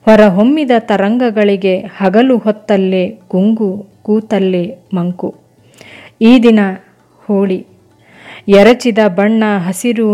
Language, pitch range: Kannada, 195-225 Hz